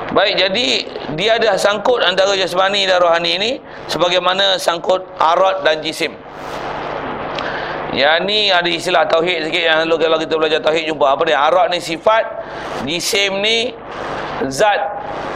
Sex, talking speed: male, 135 wpm